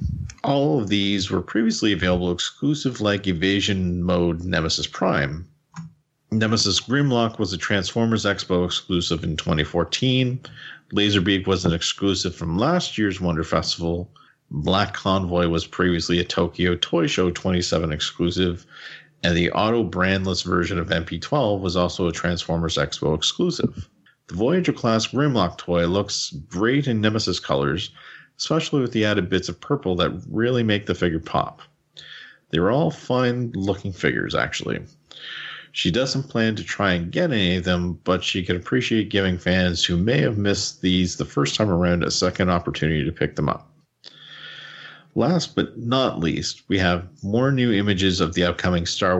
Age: 40-59